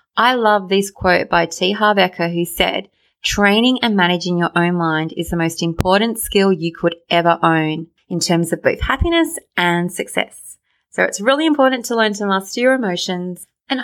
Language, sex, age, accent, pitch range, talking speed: English, female, 30-49, Australian, 180-250 Hz, 180 wpm